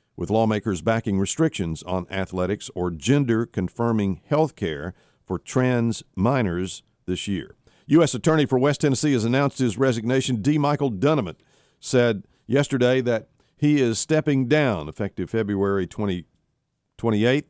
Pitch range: 100-130 Hz